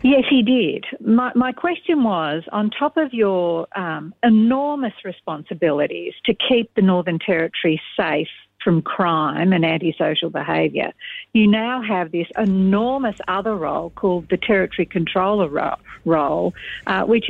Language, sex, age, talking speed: English, female, 60-79, 135 wpm